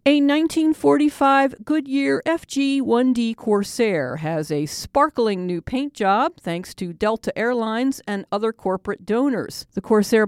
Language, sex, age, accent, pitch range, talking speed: English, female, 50-69, American, 180-250 Hz, 125 wpm